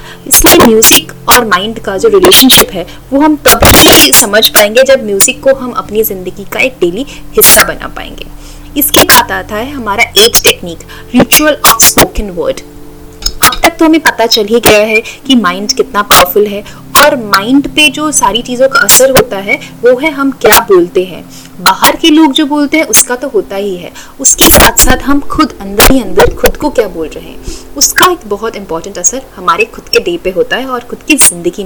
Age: 30-49